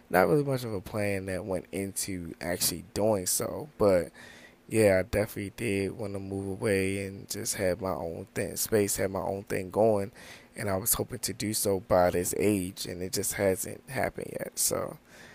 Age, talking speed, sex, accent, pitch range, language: 20-39, 195 wpm, male, American, 95-105 Hz, English